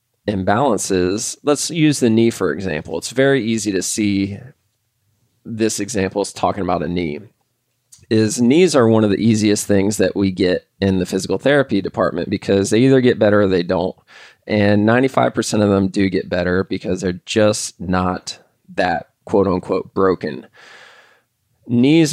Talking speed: 155 wpm